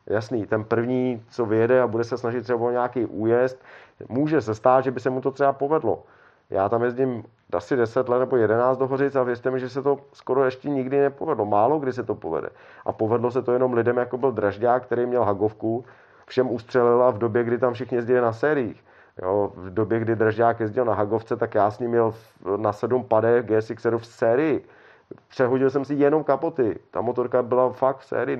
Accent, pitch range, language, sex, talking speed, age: native, 110-130 Hz, Czech, male, 210 wpm, 40-59